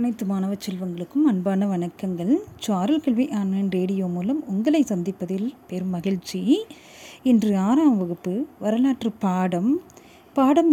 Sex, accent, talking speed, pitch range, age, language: female, native, 110 wpm, 195-285 Hz, 30-49, Tamil